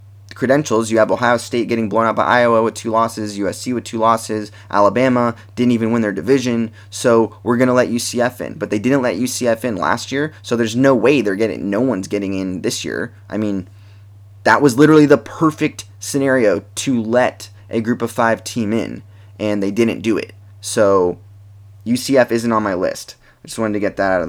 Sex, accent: male, American